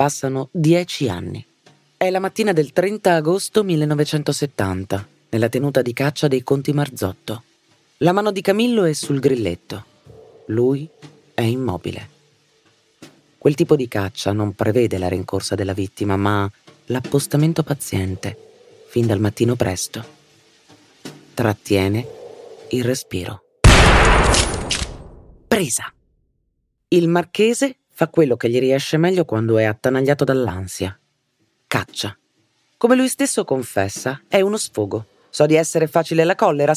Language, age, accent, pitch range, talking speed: Italian, 40-59, native, 110-160 Hz, 120 wpm